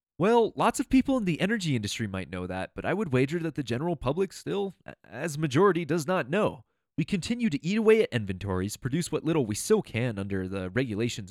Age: 20-39